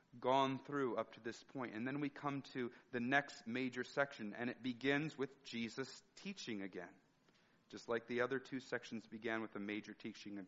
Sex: male